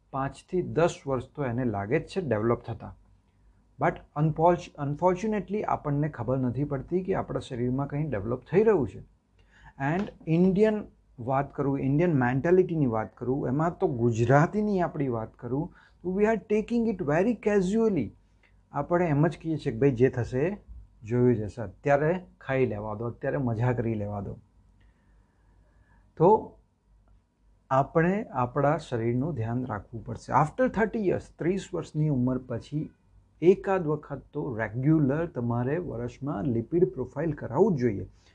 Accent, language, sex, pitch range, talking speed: native, Gujarati, male, 120-175 Hz, 125 wpm